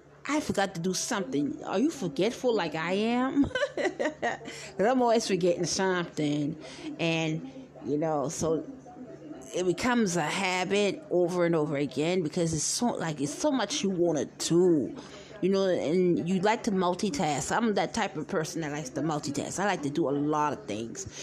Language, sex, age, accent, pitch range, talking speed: English, female, 30-49, American, 170-235 Hz, 180 wpm